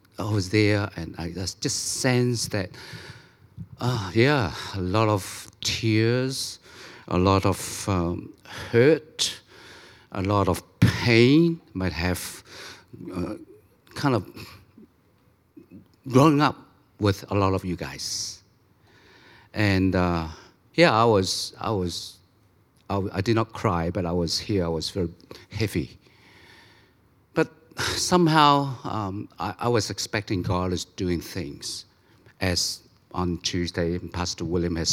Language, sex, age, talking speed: English, male, 50-69, 125 wpm